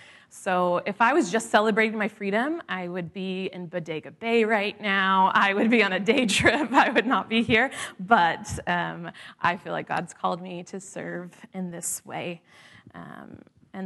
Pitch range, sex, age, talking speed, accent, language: 175-215 Hz, female, 30-49, 185 wpm, American, English